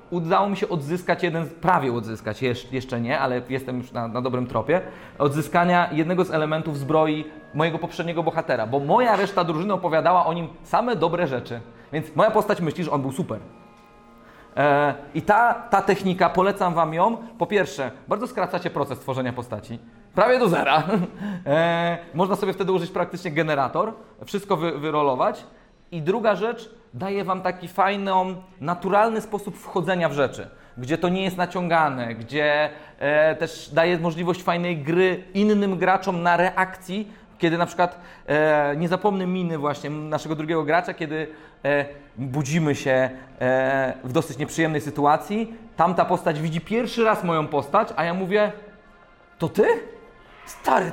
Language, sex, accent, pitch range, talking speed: Polish, male, native, 150-195 Hz, 145 wpm